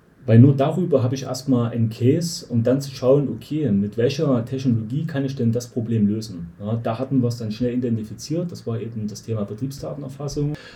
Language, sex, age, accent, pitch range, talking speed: German, male, 30-49, German, 110-130 Hz, 200 wpm